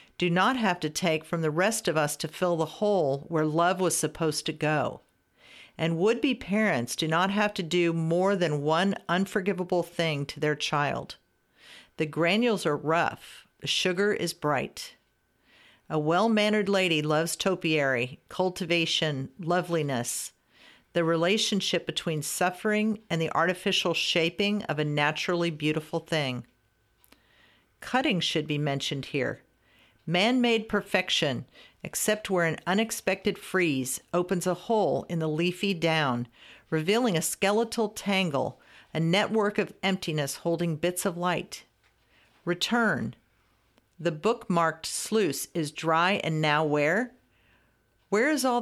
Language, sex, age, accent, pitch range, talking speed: English, female, 50-69, American, 155-195 Hz, 130 wpm